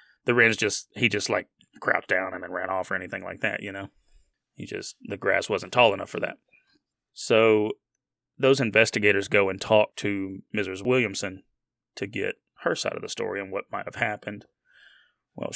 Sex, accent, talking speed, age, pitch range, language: male, American, 190 wpm, 30-49, 100-120 Hz, English